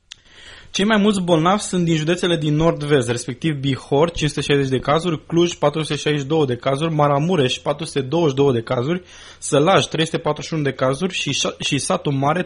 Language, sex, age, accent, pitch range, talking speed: Romanian, male, 20-39, native, 135-170 Hz, 145 wpm